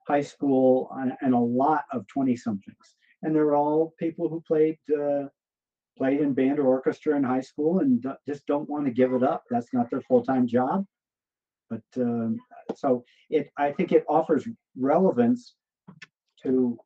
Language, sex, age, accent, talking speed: English, male, 50-69, American, 165 wpm